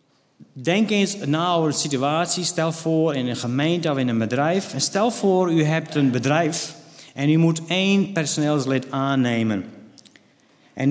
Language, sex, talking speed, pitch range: Dutch, male, 150 wpm, 120-160 Hz